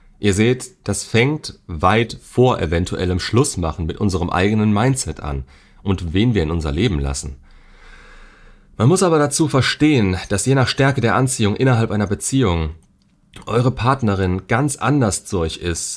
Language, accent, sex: German, German, male